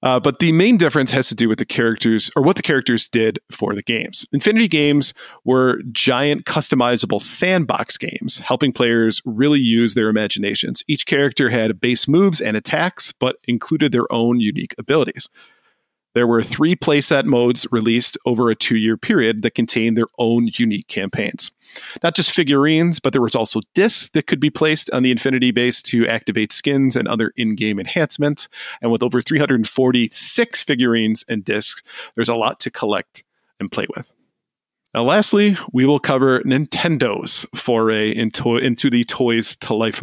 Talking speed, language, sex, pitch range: 165 wpm, English, male, 115-150 Hz